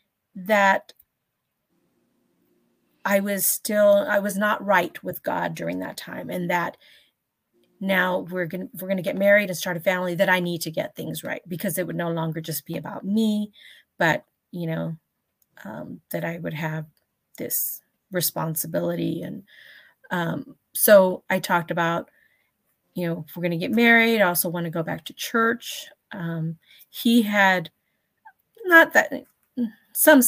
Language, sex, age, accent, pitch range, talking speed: English, female, 30-49, American, 170-200 Hz, 155 wpm